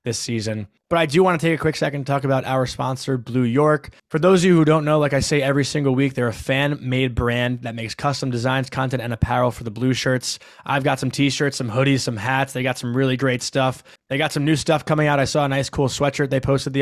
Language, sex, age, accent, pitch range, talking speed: English, male, 20-39, American, 120-140 Hz, 270 wpm